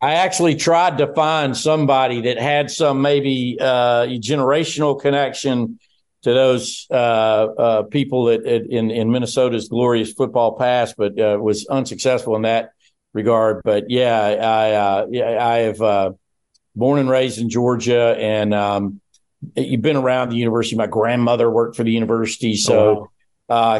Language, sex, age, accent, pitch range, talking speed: English, male, 50-69, American, 110-130 Hz, 150 wpm